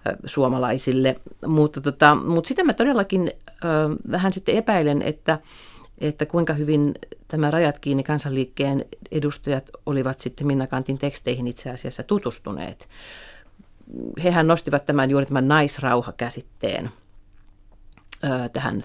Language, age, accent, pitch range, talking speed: Finnish, 40-59, native, 125-150 Hz, 115 wpm